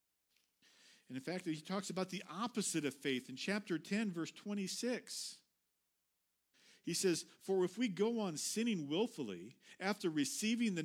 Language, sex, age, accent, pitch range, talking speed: English, male, 50-69, American, 130-205 Hz, 150 wpm